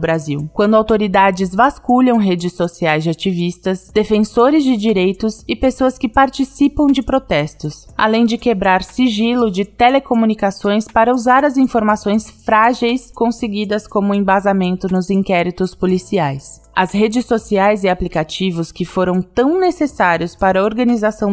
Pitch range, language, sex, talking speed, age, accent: 190-245 Hz, Portuguese, female, 130 wpm, 20-39, Brazilian